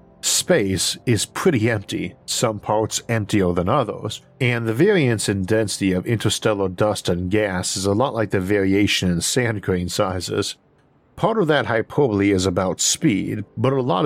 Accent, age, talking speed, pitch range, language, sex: American, 50-69, 165 wpm, 95-125 Hz, English, male